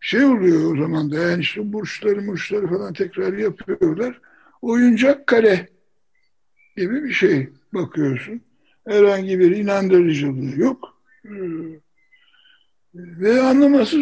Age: 60-79